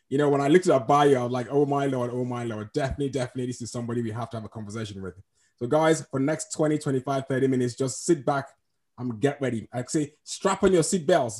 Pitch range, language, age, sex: 125-160 Hz, English, 20-39, male